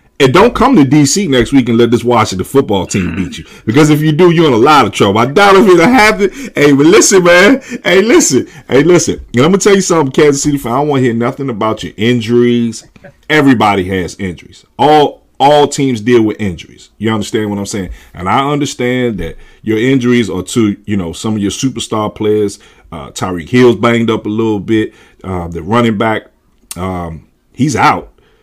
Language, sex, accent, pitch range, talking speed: English, male, American, 90-125 Hz, 215 wpm